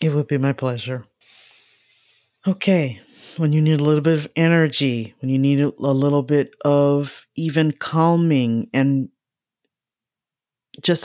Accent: American